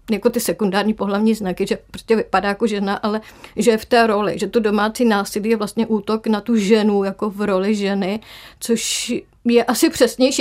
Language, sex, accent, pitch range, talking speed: Czech, female, native, 205-235 Hz, 195 wpm